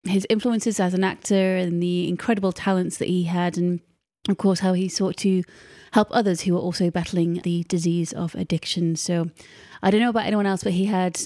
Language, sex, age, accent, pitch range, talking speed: English, female, 30-49, British, 170-190 Hz, 210 wpm